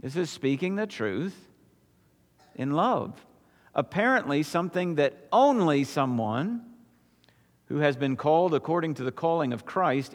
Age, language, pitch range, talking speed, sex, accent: 50-69, English, 130-190 Hz, 130 wpm, male, American